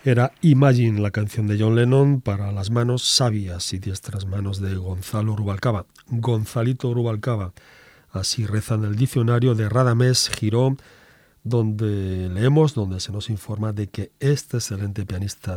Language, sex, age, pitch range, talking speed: Spanish, male, 40-59, 105-125 Hz, 145 wpm